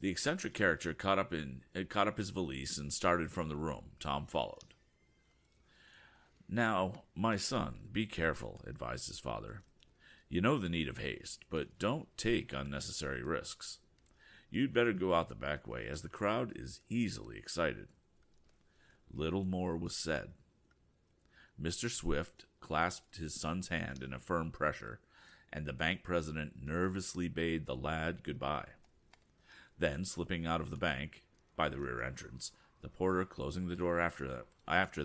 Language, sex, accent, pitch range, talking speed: English, male, American, 70-90 Hz, 145 wpm